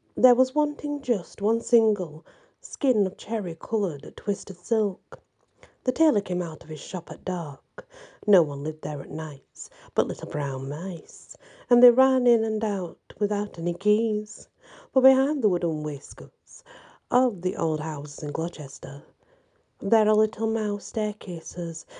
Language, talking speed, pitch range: English, 155 wpm, 175-260 Hz